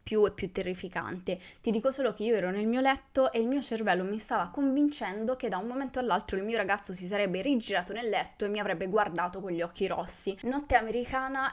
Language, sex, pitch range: Italian, female, 185-225 Hz